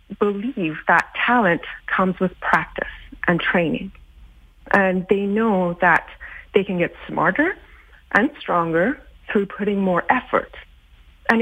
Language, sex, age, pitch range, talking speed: English, female, 30-49, 180-230 Hz, 120 wpm